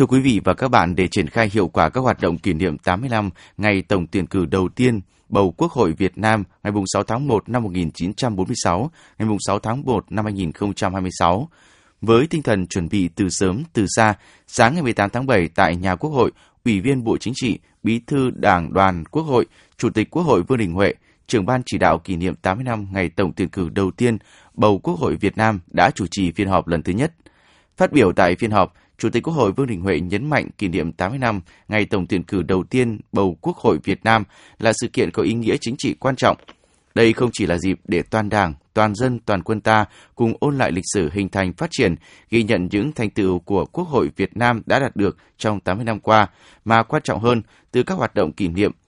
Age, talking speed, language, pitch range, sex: 20-39, 235 wpm, Vietnamese, 95-115 Hz, male